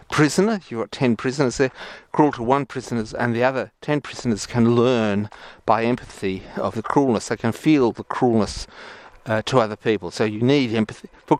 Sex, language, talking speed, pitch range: male, English, 190 wpm, 110-140 Hz